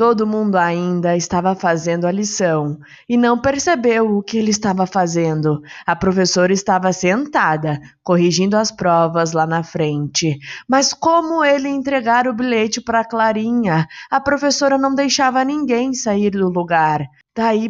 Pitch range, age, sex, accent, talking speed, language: 160-225 Hz, 20-39, female, Brazilian, 145 wpm, Portuguese